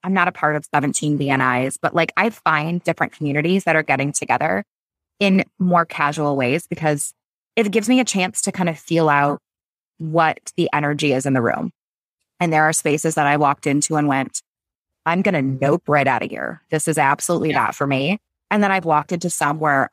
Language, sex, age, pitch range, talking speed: English, female, 20-39, 145-180 Hz, 210 wpm